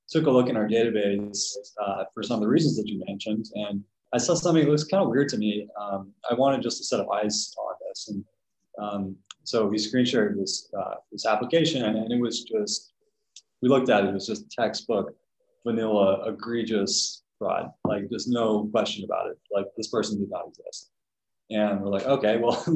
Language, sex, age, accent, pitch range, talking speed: English, male, 20-39, American, 105-130 Hz, 210 wpm